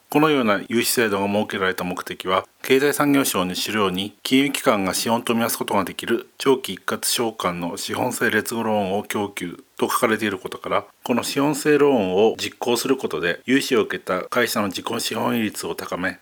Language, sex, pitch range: Japanese, male, 100-130 Hz